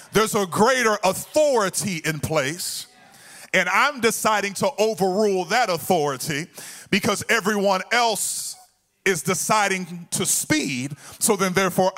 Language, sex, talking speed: English, male, 115 wpm